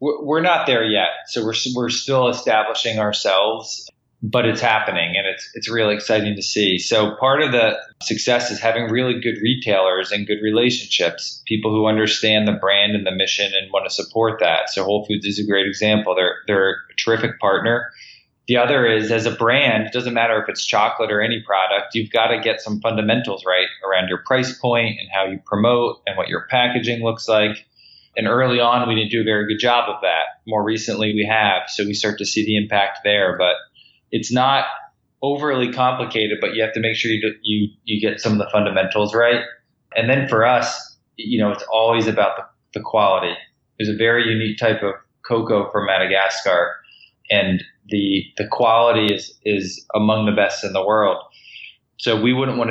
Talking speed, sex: 200 wpm, male